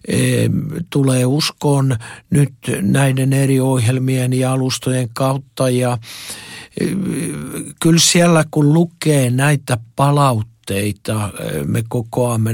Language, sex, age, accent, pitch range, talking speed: Finnish, male, 60-79, native, 115-130 Hz, 85 wpm